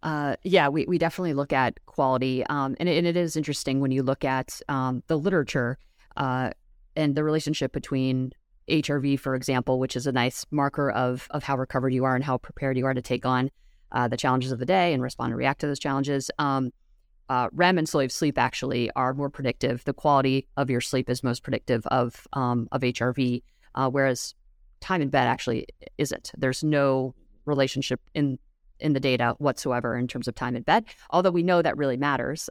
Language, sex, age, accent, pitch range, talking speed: English, female, 30-49, American, 125-145 Hz, 205 wpm